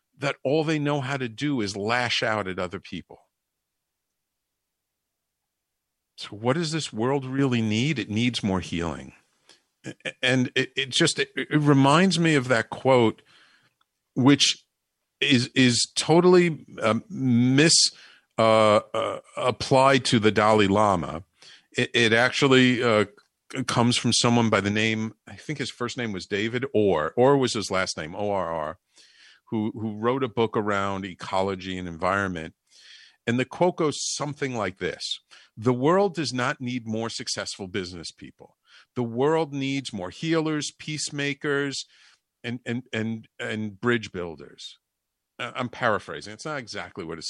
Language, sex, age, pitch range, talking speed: English, male, 50-69, 110-150 Hz, 145 wpm